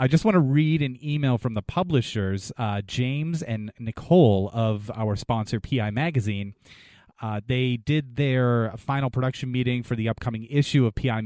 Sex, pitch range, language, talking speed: male, 110-135 Hz, English, 170 wpm